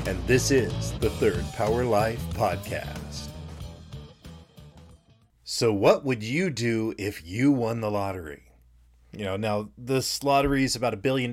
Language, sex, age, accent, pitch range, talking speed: English, male, 40-59, American, 100-130 Hz, 145 wpm